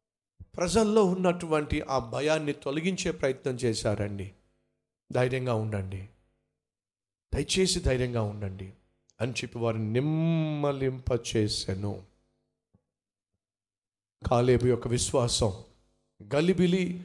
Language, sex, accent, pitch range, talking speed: Telugu, male, native, 100-160 Hz, 55 wpm